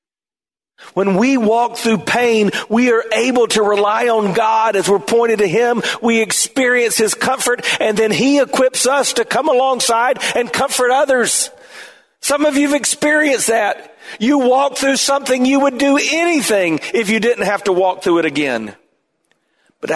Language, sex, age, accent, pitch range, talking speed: English, male, 40-59, American, 140-235 Hz, 170 wpm